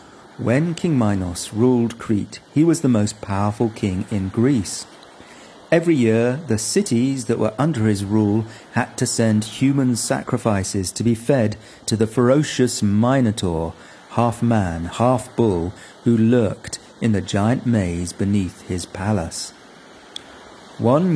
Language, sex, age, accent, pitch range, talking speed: English, male, 40-59, British, 100-125 Hz, 130 wpm